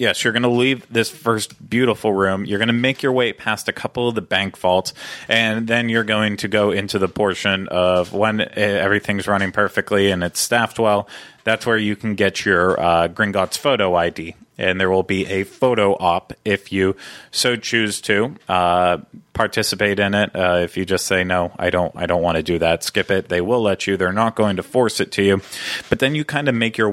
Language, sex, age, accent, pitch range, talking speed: English, male, 30-49, American, 95-115 Hz, 225 wpm